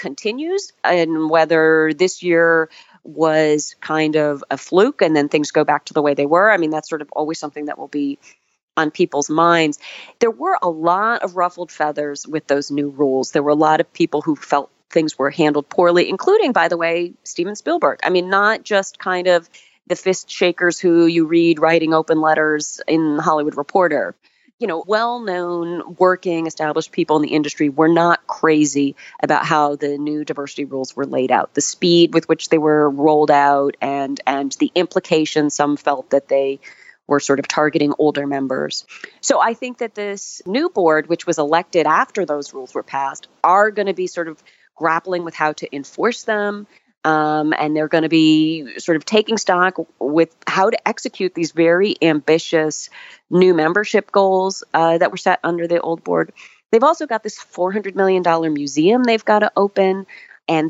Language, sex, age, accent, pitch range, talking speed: English, female, 30-49, American, 150-185 Hz, 190 wpm